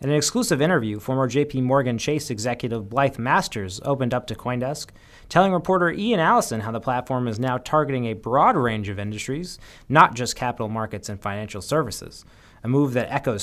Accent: American